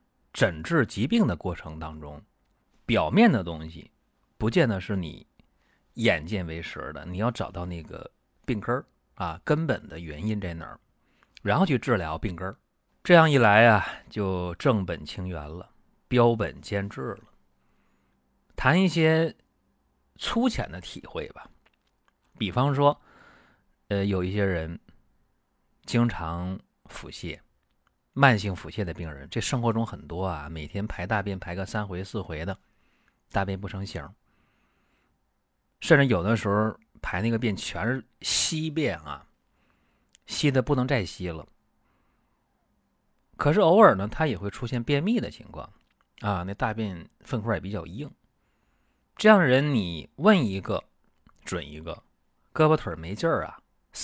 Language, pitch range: Chinese, 85-120 Hz